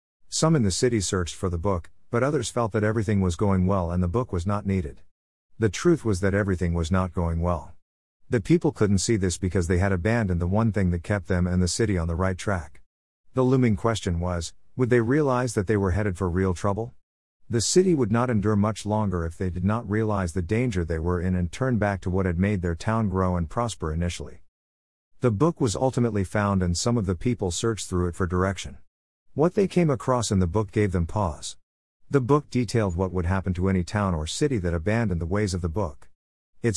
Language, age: English, 50-69